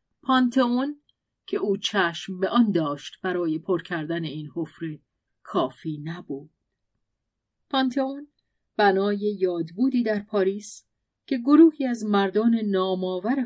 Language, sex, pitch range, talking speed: Persian, female, 160-225 Hz, 105 wpm